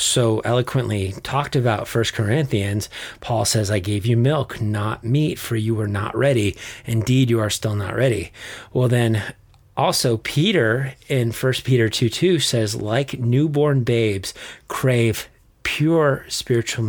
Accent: American